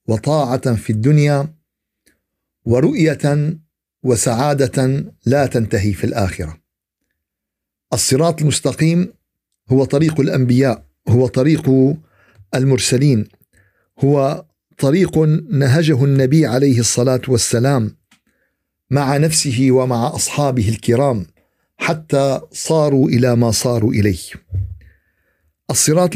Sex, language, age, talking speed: male, Arabic, 50-69, 85 wpm